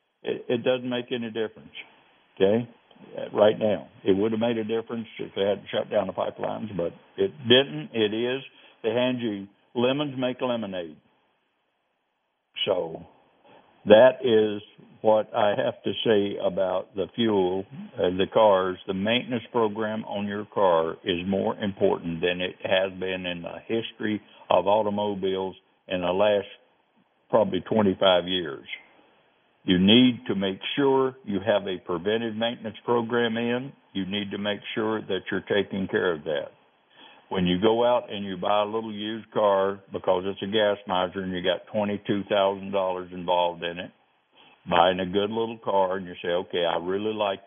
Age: 60-79